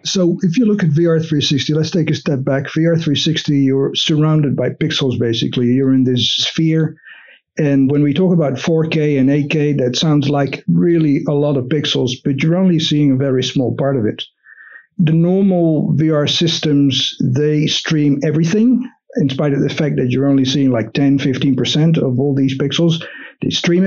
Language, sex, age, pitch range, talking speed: English, male, 50-69, 135-165 Hz, 185 wpm